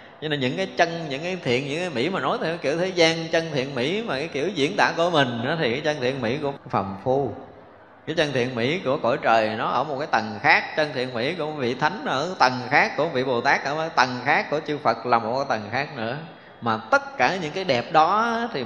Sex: male